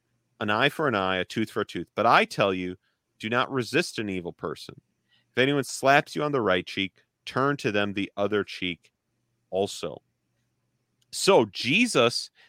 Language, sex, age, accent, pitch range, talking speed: English, male, 40-59, American, 105-135 Hz, 180 wpm